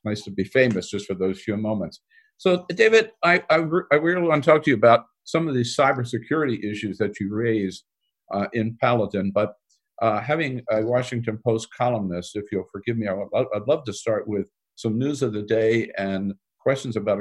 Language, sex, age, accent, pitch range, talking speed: English, male, 50-69, American, 100-130 Hz, 195 wpm